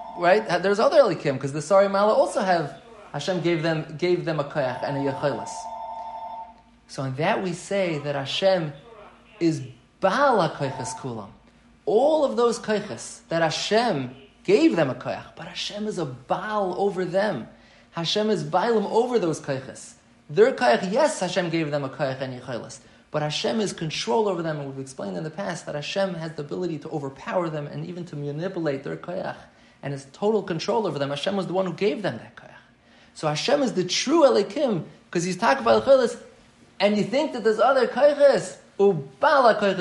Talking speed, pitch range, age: 195 wpm, 140-200 Hz, 20-39